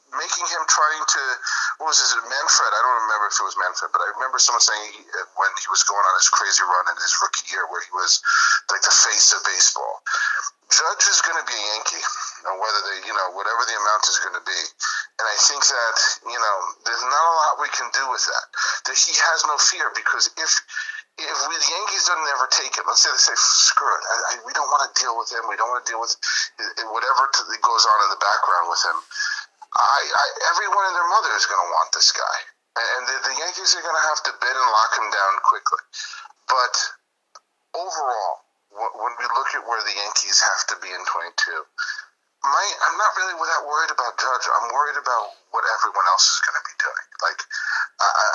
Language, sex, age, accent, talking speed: English, male, 40-59, American, 230 wpm